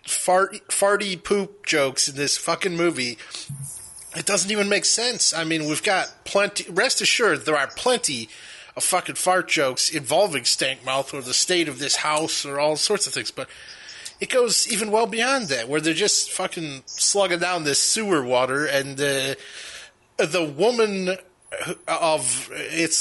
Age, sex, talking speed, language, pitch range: 20-39, male, 165 wpm, English, 130-195 Hz